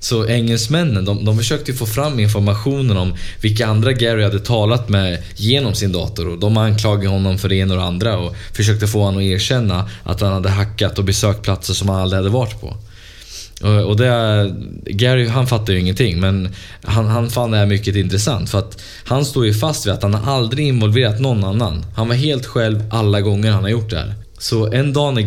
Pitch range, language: 100-120 Hz, Swedish